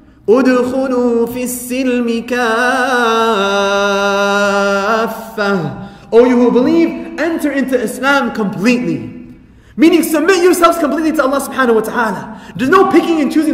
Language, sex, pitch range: English, male, 245-320 Hz